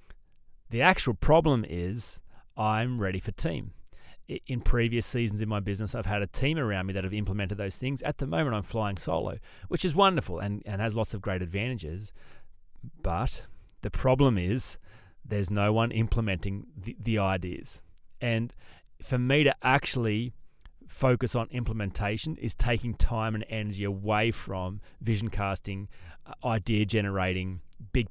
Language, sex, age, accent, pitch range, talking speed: English, male, 30-49, Australian, 100-130 Hz, 155 wpm